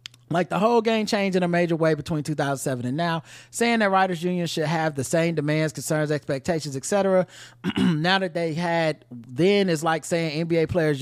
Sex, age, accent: male, 20-39, American